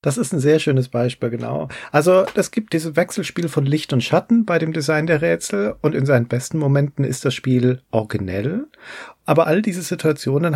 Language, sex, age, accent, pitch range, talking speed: German, male, 40-59, German, 125-160 Hz, 195 wpm